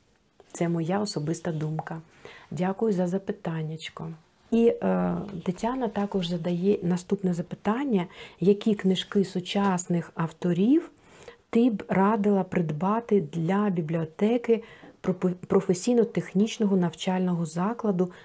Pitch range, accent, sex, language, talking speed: 170-205 Hz, native, female, Ukrainian, 85 wpm